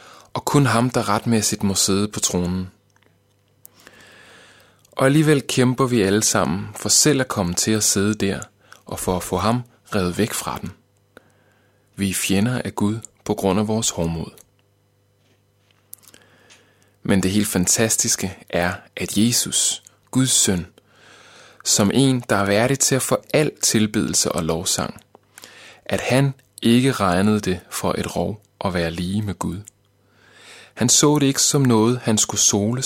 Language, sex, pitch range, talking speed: Danish, male, 100-115 Hz, 155 wpm